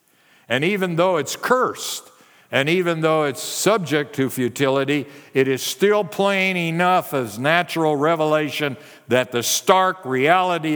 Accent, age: American, 60-79